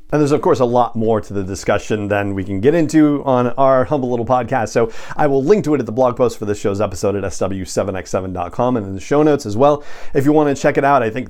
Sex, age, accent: male, 40-59, American